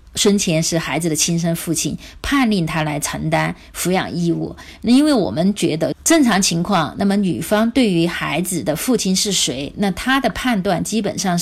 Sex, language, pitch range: female, Chinese, 165-205 Hz